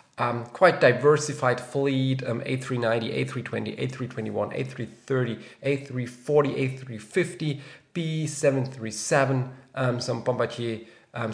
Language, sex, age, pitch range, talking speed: English, male, 30-49, 110-135 Hz, 85 wpm